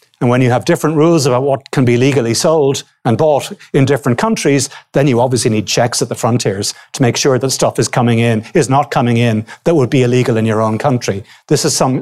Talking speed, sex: 240 wpm, male